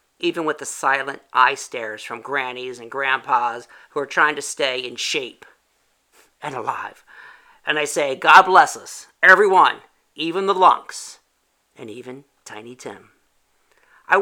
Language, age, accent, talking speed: English, 50-69, American, 145 wpm